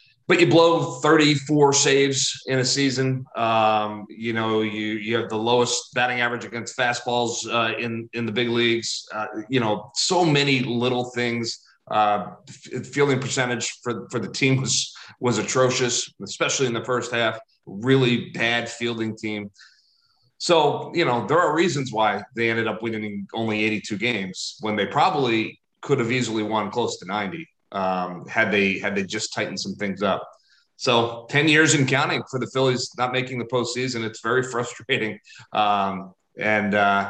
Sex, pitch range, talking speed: male, 115-140 Hz, 165 wpm